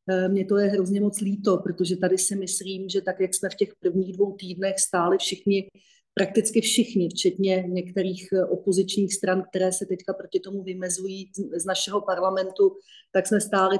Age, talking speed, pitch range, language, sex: 40-59, 170 wpm, 185-205 Hz, Slovak, female